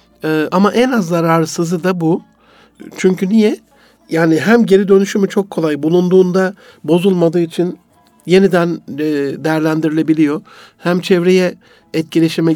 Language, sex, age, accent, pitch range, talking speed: Turkish, male, 60-79, native, 145-185 Hz, 105 wpm